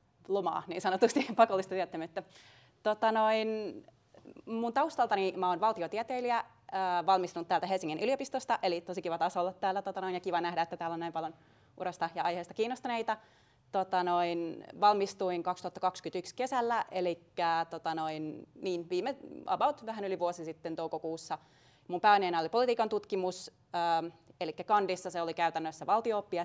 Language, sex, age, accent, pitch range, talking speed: Finnish, female, 30-49, native, 160-200 Hz, 145 wpm